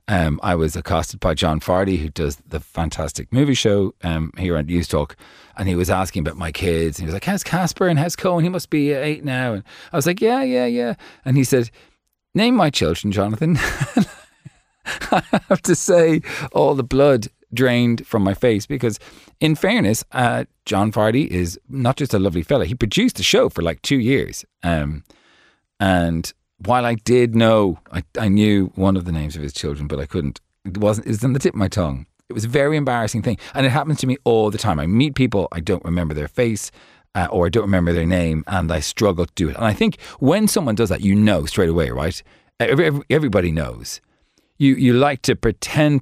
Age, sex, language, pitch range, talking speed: 30-49, male, English, 85-135 Hz, 220 wpm